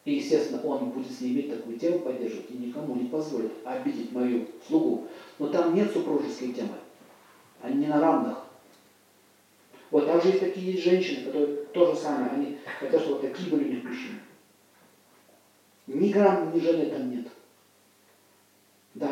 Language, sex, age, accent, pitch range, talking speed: Russian, male, 40-59, native, 135-210 Hz, 155 wpm